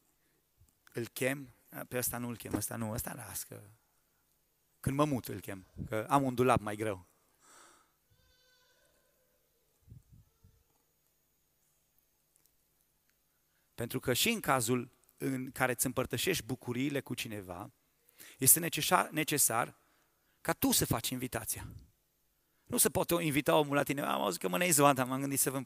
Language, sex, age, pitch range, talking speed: Romanian, male, 30-49, 120-150 Hz, 140 wpm